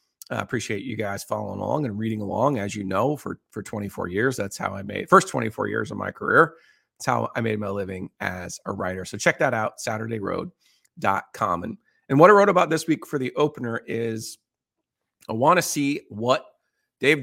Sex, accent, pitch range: male, American, 110-140 Hz